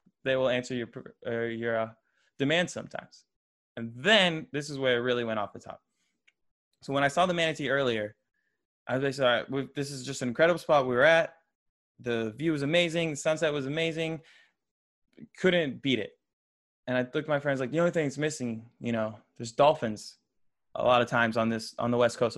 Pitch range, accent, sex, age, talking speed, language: 120-140 Hz, American, male, 20-39, 205 wpm, English